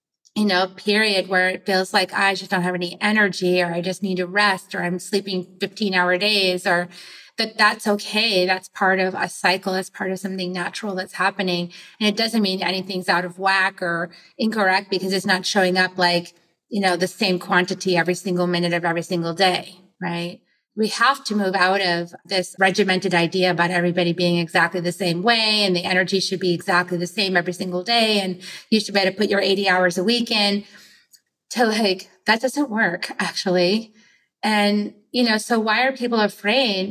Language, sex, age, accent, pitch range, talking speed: English, female, 30-49, American, 180-210 Hz, 200 wpm